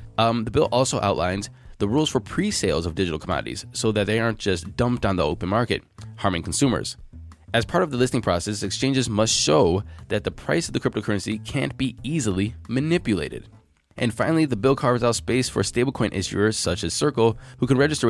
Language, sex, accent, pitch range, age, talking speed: English, male, American, 90-120 Hz, 20-39, 195 wpm